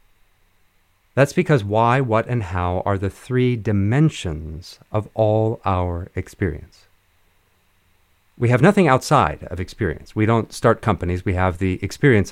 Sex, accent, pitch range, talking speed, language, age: male, American, 90-115 Hz, 135 wpm, English, 50-69